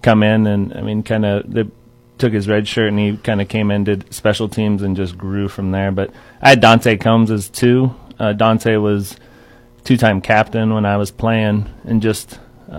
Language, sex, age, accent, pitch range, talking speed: English, male, 30-49, American, 105-115 Hz, 205 wpm